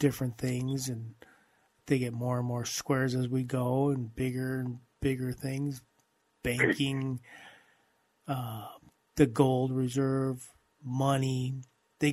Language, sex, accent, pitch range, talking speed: English, male, American, 135-160 Hz, 120 wpm